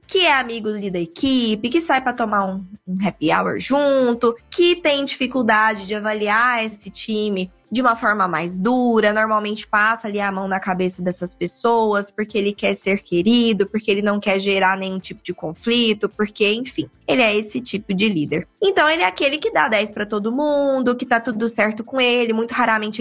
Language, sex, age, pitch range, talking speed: Portuguese, female, 20-39, 200-255 Hz, 195 wpm